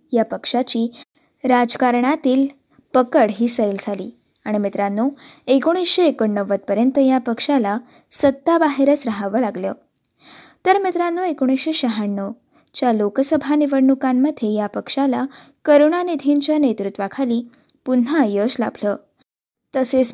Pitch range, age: 230-290 Hz, 20-39